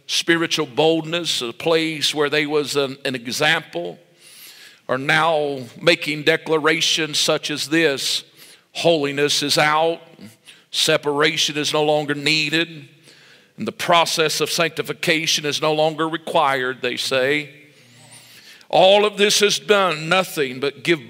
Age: 50-69